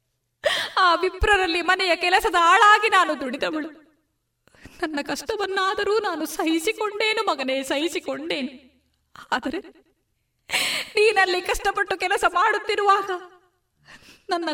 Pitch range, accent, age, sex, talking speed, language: 310-405 Hz, native, 20-39, female, 80 wpm, Kannada